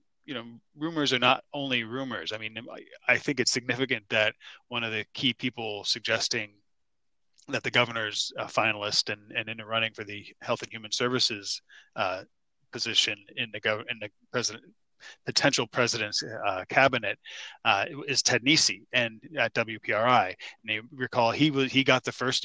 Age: 30-49